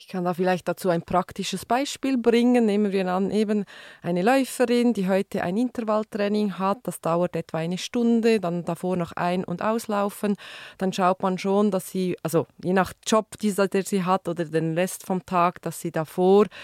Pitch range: 180-215 Hz